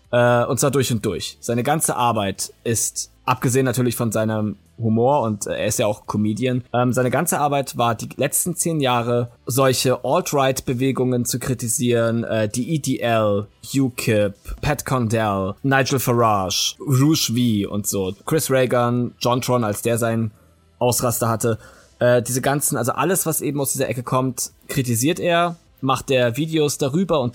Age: 20-39